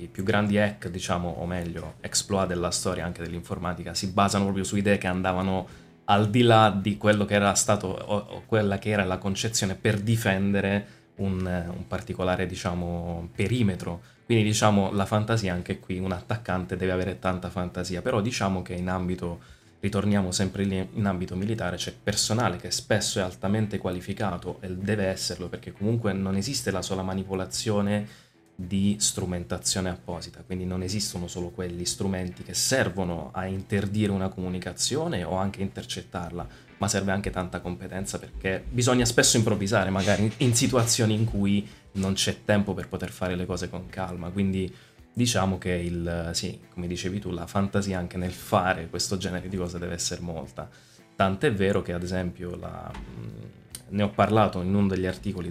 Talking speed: 170 wpm